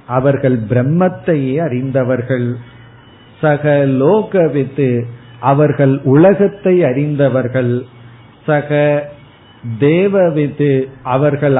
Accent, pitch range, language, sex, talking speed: native, 120-150 Hz, Tamil, male, 60 wpm